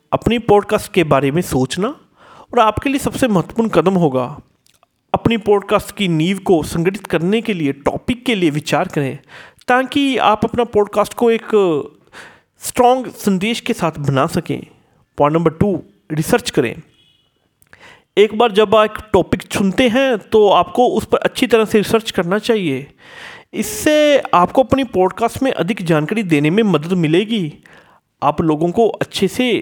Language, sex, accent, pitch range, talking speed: Hindi, male, native, 165-235 Hz, 155 wpm